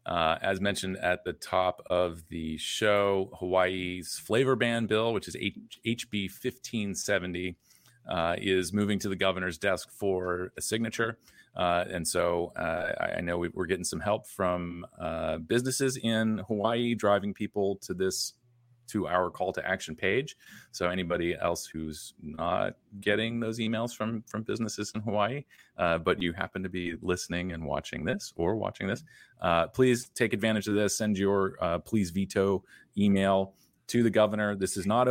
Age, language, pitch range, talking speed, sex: 30-49, English, 90-110 Hz, 165 wpm, male